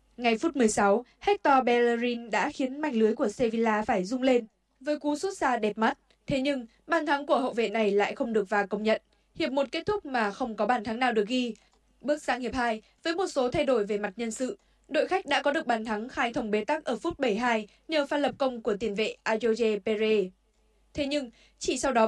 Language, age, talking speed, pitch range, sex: Vietnamese, 20-39, 235 wpm, 215-275 Hz, female